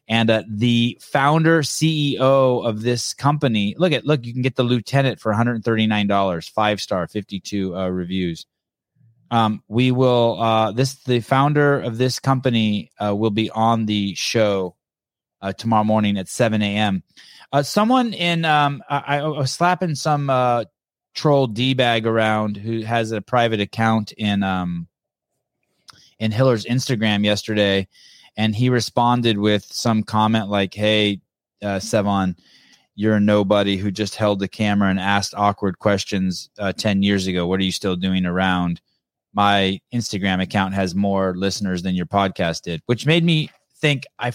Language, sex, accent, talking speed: English, male, American, 160 wpm